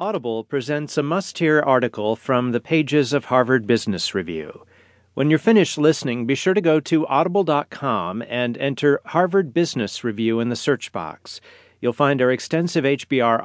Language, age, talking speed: English, 50-69, 160 wpm